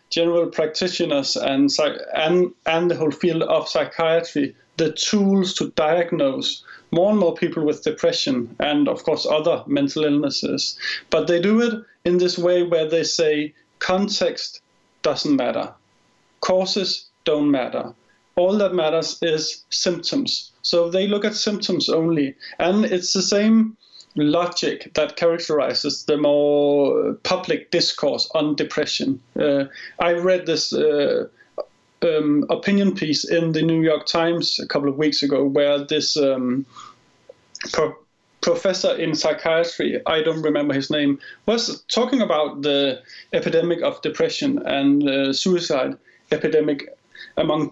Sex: male